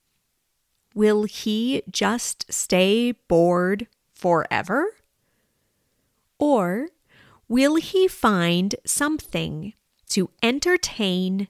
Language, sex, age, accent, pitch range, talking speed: English, female, 30-49, American, 175-245 Hz, 70 wpm